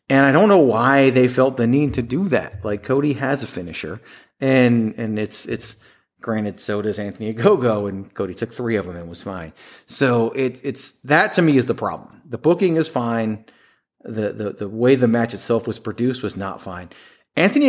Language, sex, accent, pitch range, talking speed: English, male, American, 110-145 Hz, 205 wpm